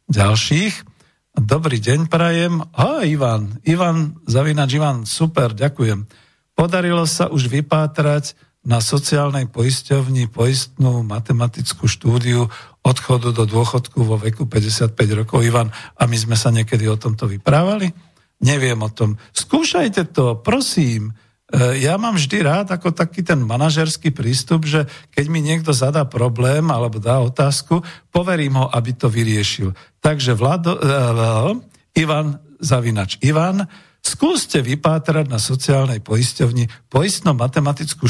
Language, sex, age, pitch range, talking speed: Slovak, male, 50-69, 120-155 Hz, 125 wpm